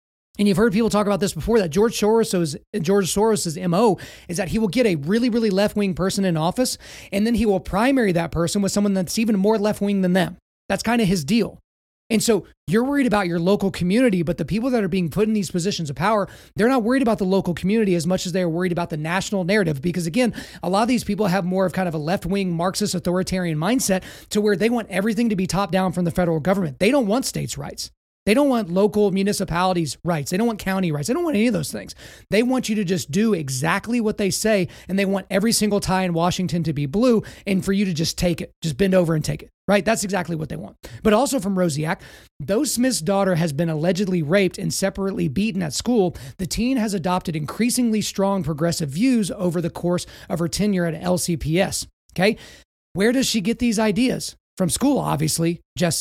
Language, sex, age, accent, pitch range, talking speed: English, male, 30-49, American, 175-215 Hz, 230 wpm